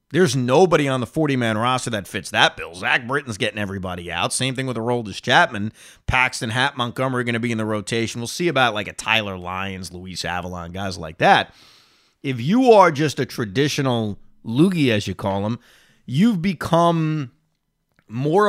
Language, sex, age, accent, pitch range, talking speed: English, male, 30-49, American, 110-160 Hz, 185 wpm